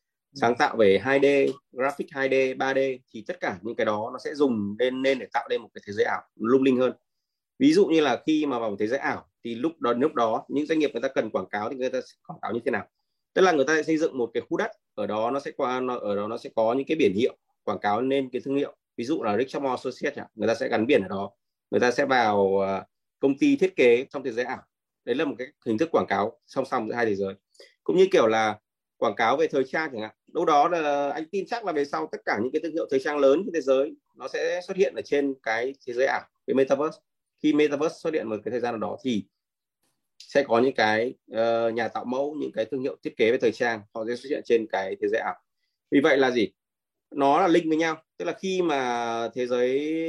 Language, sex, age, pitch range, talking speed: Vietnamese, male, 20-39, 120-160 Hz, 275 wpm